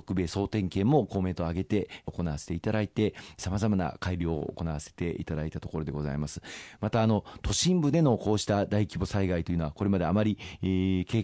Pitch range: 90-115 Hz